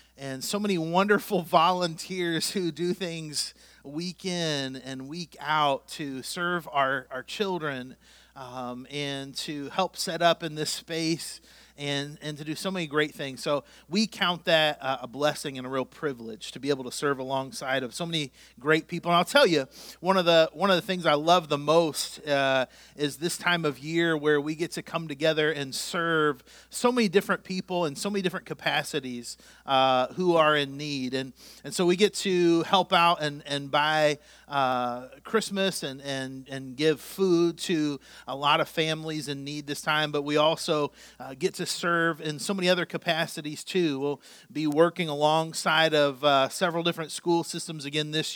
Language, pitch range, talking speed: English, 140-170 Hz, 190 wpm